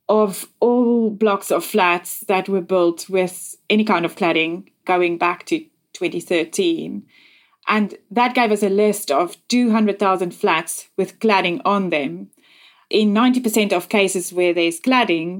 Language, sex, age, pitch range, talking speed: English, female, 20-39, 175-215 Hz, 145 wpm